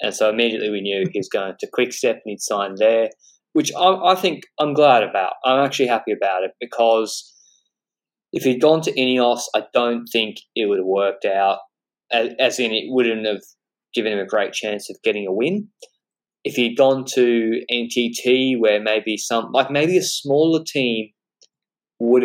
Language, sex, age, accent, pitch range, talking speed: English, male, 20-39, Australian, 105-145 Hz, 180 wpm